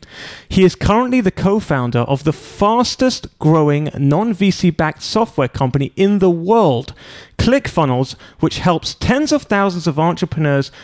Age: 30-49